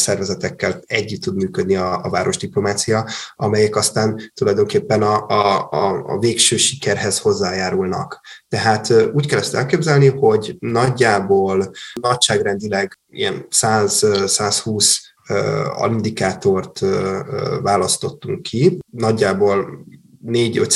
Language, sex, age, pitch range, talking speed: Hungarian, male, 20-39, 100-120 Hz, 90 wpm